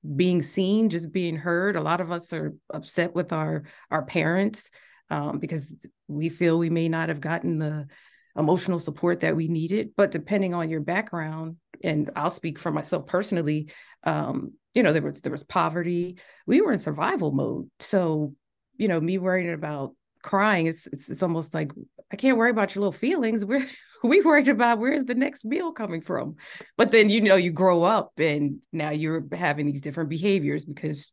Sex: female